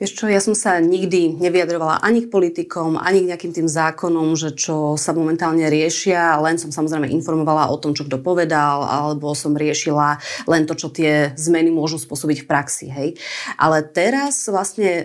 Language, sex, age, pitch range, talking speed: Slovak, female, 30-49, 160-180 Hz, 175 wpm